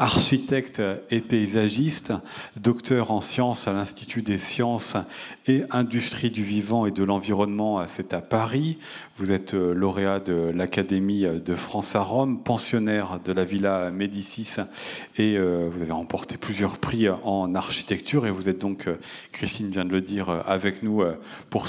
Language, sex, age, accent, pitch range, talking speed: French, male, 40-59, French, 95-115 Hz, 150 wpm